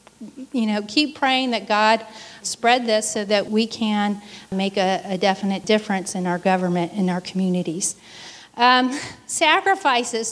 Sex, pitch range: female, 205-245 Hz